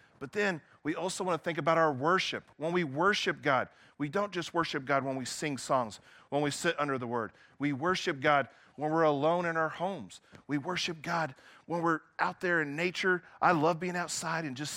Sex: male